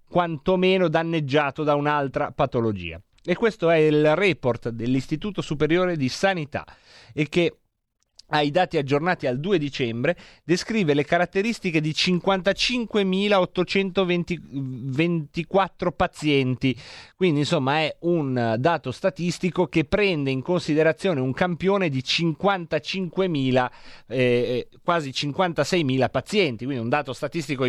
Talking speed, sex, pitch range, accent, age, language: 110 wpm, male, 125-170 Hz, native, 30-49, Italian